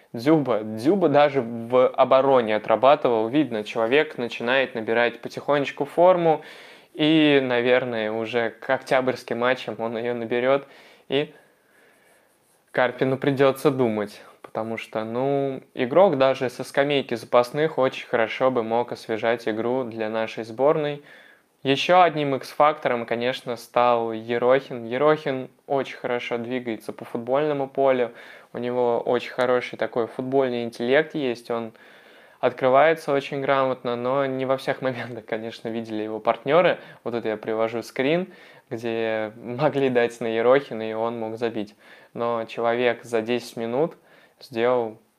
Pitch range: 115-135 Hz